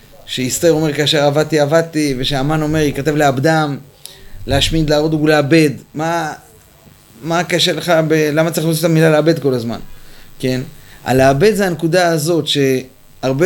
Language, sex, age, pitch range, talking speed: Hebrew, male, 30-49, 130-165 Hz, 140 wpm